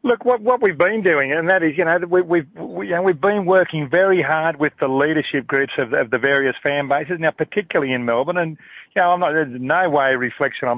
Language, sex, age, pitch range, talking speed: English, male, 40-59, 125-165 Hz, 255 wpm